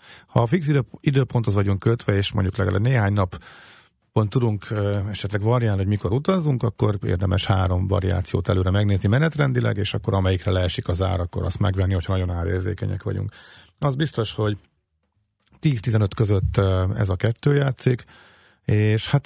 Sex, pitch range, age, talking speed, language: male, 95-120 Hz, 40-59, 155 wpm, Hungarian